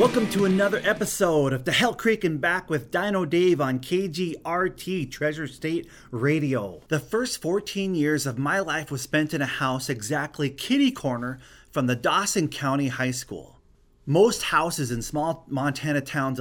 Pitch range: 130-175 Hz